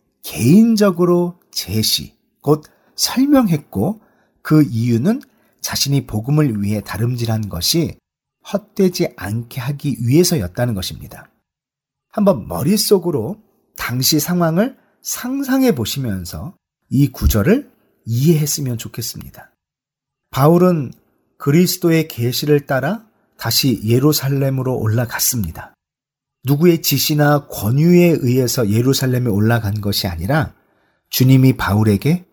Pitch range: 115-175 Hz